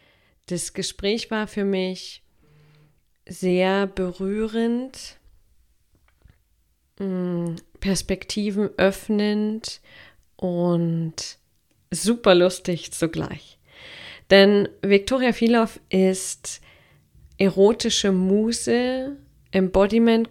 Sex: female